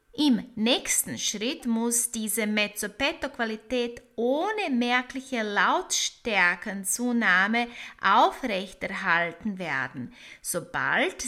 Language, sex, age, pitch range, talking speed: German, female, 30-49, 215-275 Hz, 70 wpm